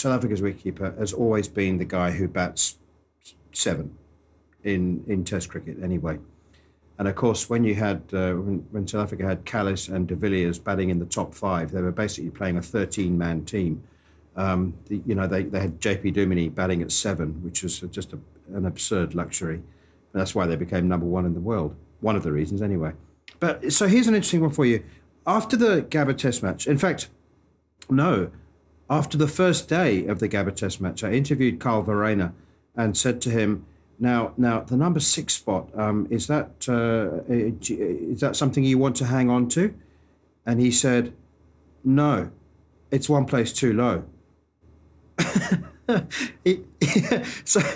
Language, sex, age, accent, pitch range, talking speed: English, male, 50-69, British, 85-125 Hz, 175 wpm